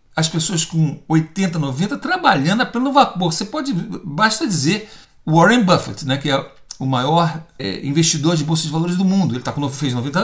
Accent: Brazilian